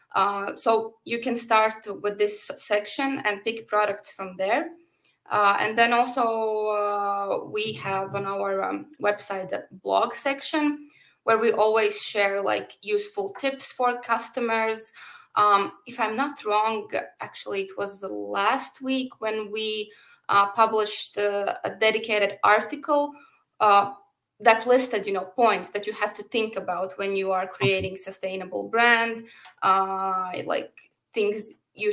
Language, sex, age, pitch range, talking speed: Italian, female, 20-39, 200-225 Hz, 145 wpm